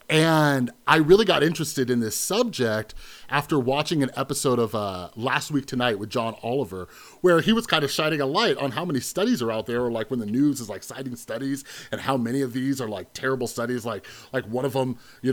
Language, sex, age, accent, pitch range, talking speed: English, male, 30-49, American, 120-145 Hz, 230 wpm